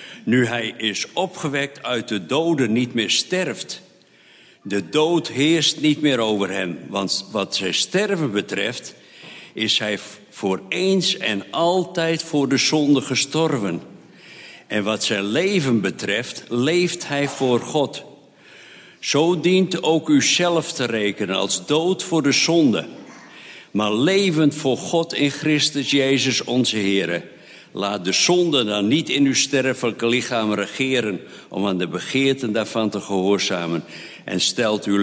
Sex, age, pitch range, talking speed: male, 60-79, 100-145 Hz, 140 wpm